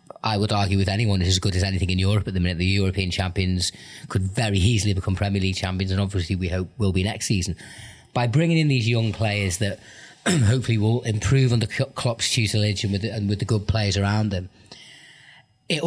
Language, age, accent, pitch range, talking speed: English, 30-49, British, 105-130 Hz, 215 wpm